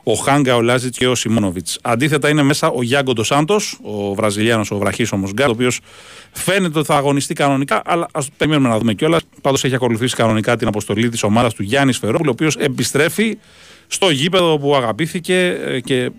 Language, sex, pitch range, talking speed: Greek, male, 110-140 Hz, 195 wpm